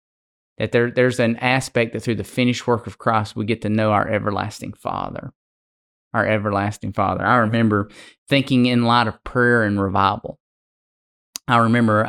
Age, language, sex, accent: 20-39, English, male, American